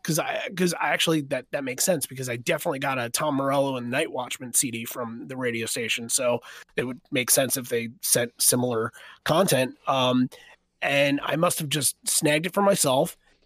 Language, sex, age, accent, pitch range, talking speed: English, male, 30-49, American, 130-175 Hz, 190 wpm